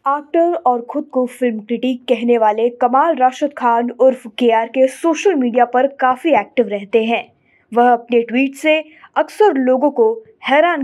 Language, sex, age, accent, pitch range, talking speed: Hindi, female, 20-39, native, 235-310 Hz, 160 wpm